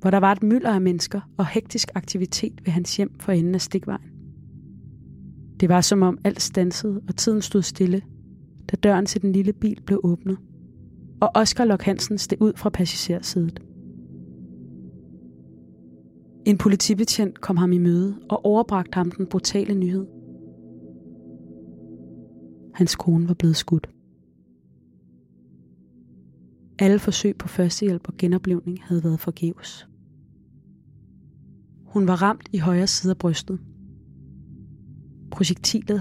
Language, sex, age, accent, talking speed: English, female, 20-39, Danish, 130 wpm